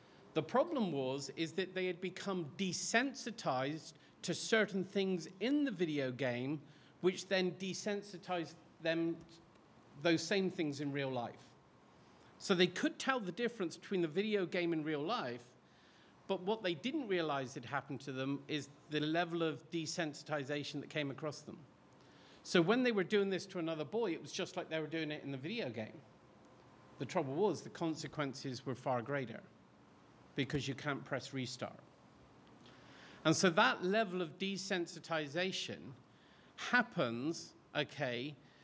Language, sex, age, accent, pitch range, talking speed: English, male, 50-69, British, 145-190 Hz, 155 wpm